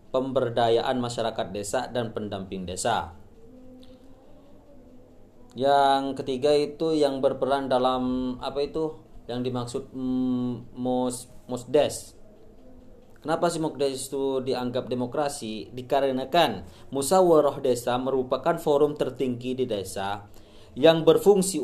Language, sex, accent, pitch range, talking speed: Indonesian, male, native, 115-140 Hz, 95 wpm